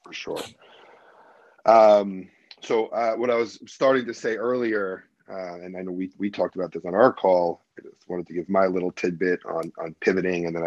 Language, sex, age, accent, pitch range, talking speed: English, male, 30-49, American, 90-110 Hz, 210 wpm